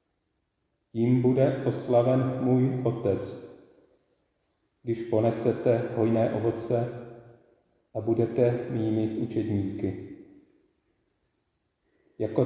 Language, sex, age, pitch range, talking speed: Czech, male, 40-59, 110-120 Hz, 65 wpm